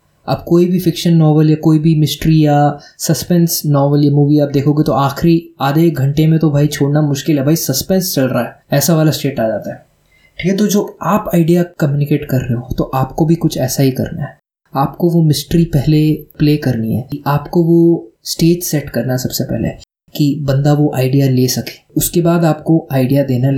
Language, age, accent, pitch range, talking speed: Hindi, 20-39, native, 135-165 Hz, 205 wpm